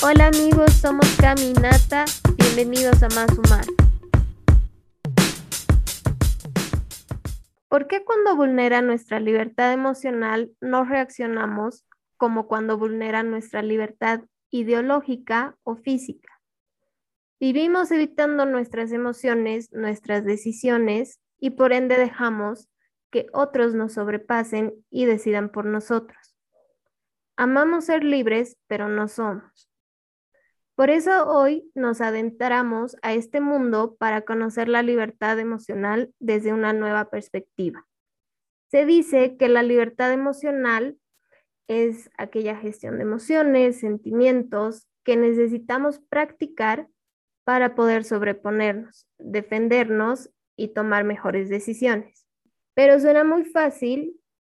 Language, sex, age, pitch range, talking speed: Spanish, female, 10-29, 220-265 Hz, 100 wpm